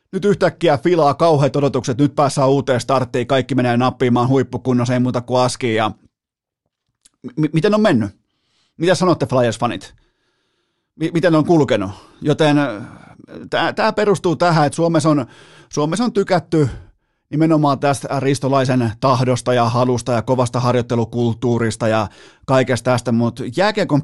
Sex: male